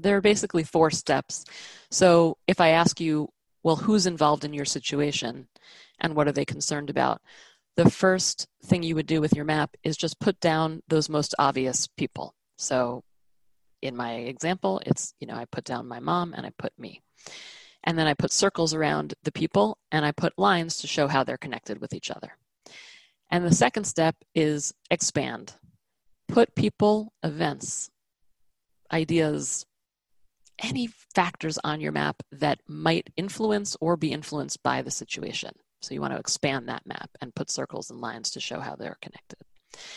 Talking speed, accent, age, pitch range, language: 175 wpm, American, 30-49, 145-175 Hz, English